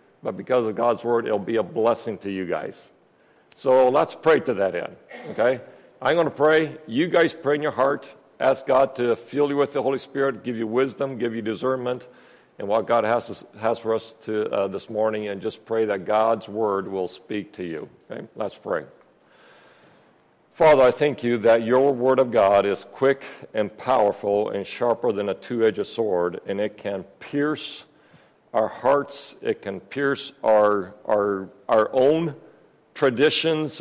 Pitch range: 105-140 Hz